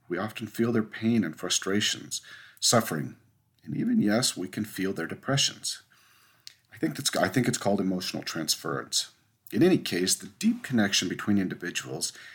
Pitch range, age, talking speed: 95-120 Hz, 50-69, 160 wpm